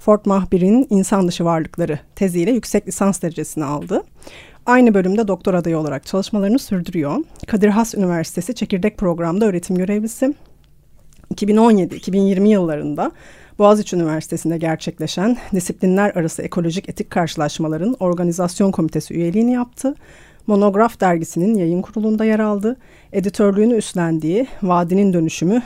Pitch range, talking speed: 175-220 Hz, 110 wpm